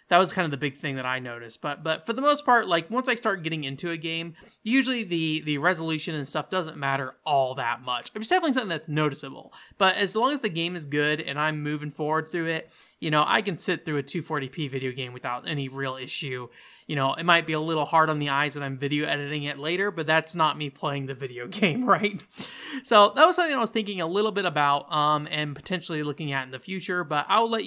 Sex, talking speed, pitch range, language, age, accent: male, 250 wpm, 145-180 Hz, English, 30-49, American